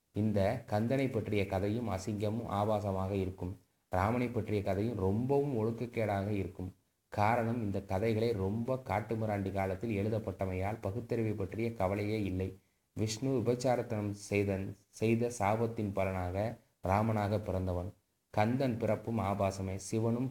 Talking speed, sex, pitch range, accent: 110 wpm, male, 100-115 Hz, native